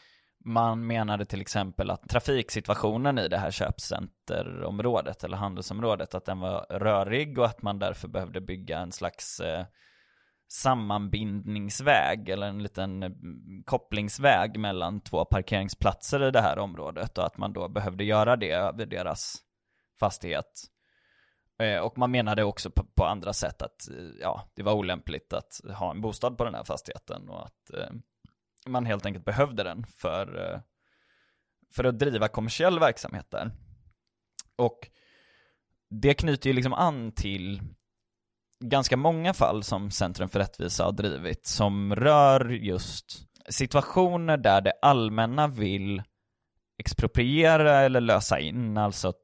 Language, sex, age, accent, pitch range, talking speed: Swedish, male, 20-39, native, 100-125 Hz, 135 wpm